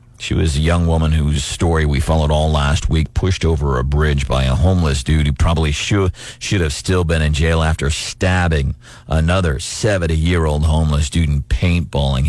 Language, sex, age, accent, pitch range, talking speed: English, male, 40-59, American, 75-90 Hz, 175 wpm